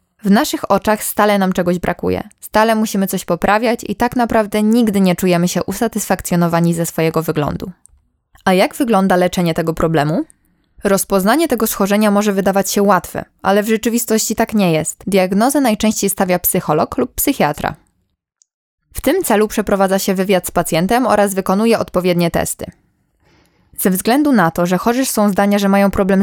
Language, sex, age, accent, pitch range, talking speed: Polish, female, 10-29, native, 175-215 Hz, 160 wpm